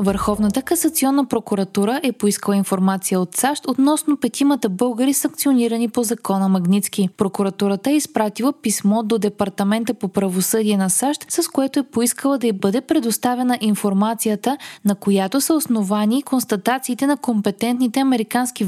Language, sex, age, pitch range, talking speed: Bulgarian, female, 20-39, 200-255 Hz, 135 wpm